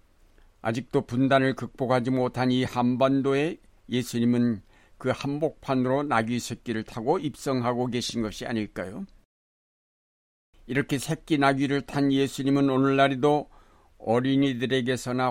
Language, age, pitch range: Korean, 60-79, 110-135 Hz